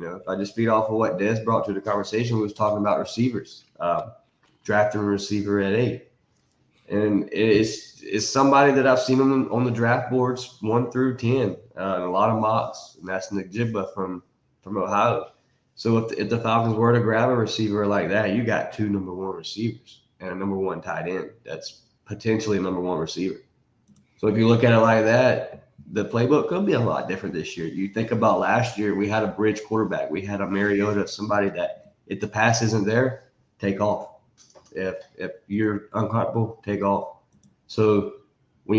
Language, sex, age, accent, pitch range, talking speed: English, male, 20-39, American, 100-115 Hz, 205 wpm